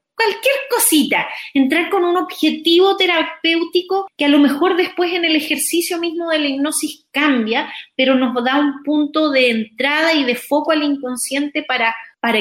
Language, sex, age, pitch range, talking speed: Spanish, female, 30-49, 200-280 Hz, 165 wpm